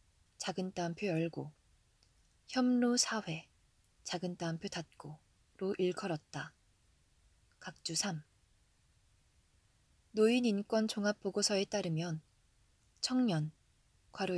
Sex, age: female, 20-39